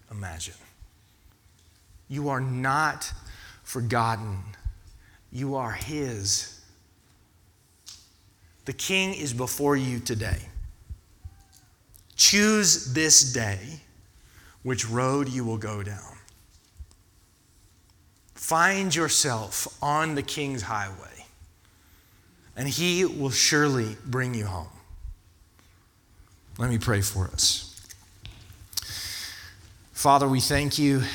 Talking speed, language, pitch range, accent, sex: 85 wpm, English, 95-135 Hz, American, male